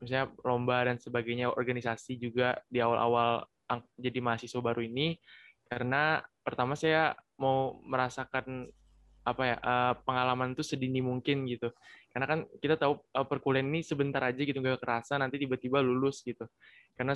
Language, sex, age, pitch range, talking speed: Indonesian, male, 20-39, 125-145 Hz, 140 wpm